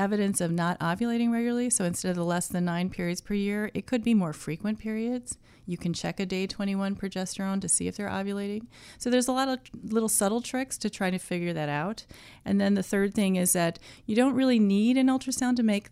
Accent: American